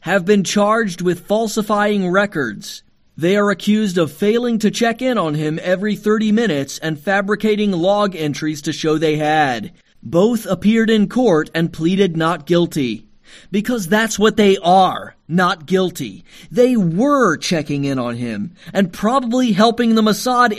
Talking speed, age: 155 wpm, 30-49